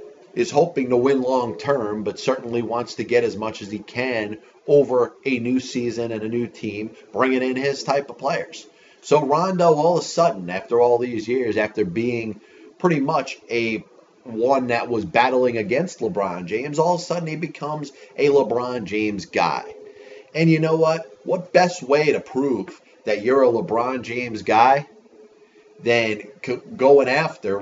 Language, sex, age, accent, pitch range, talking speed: English, male, 30-49, American, 115-145 Hz, 170 wpm